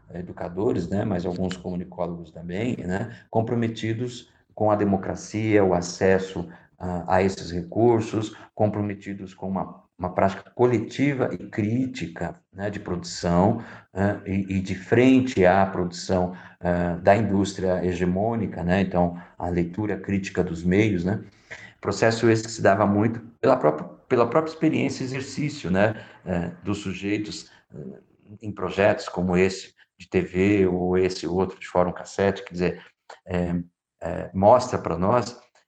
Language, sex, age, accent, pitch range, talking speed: Portuguese, male, 50-69, Brazilian, 90-110 Hz, 140 wpm